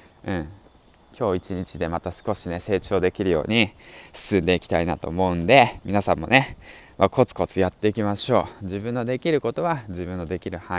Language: Japanese